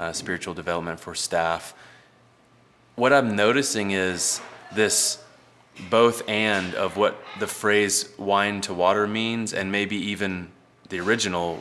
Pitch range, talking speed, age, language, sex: 90-105 Hz, 130 wpm, 20-39, English, male